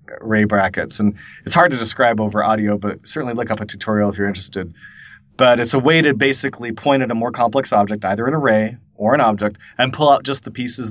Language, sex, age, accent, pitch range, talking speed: English, male, 30-49, American, 105-130 Hz, 230 wpm